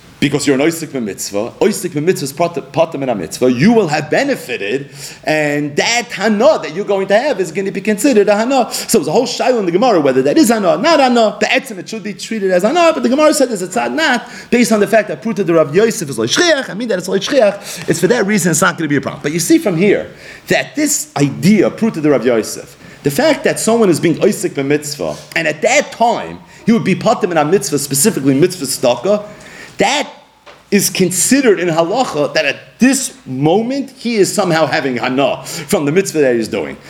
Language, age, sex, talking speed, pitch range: English, 40-59, male, 235 wpm, 150-230 Hz